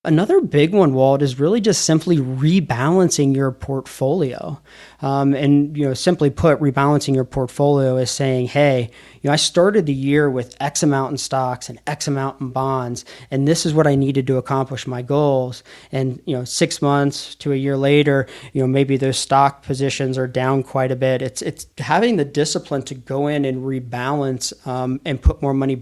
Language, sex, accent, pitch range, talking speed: English, male, American, 130-145 Hz, 195 wpm